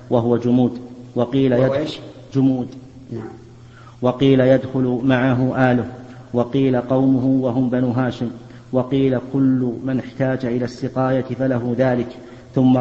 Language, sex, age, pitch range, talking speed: Arabic, male, 50-69, 125-135 Hz, 110 wpm